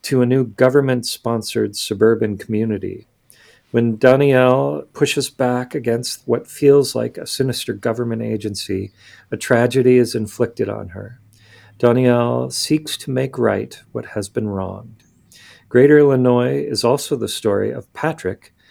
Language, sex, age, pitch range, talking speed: English, male, 40-59, 110-130 Hz, 130 wpm